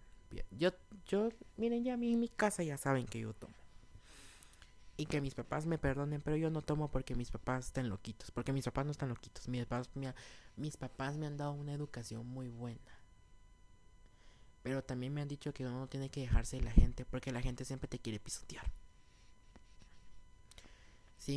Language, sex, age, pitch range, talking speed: Spanish, male, 20-39, 105-140 Hz, 190 wpm